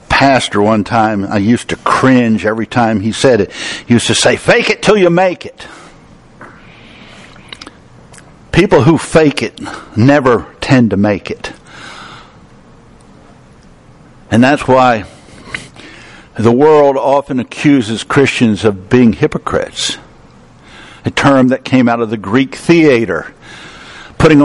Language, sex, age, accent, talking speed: English, male, 60-79, American, 130 wpm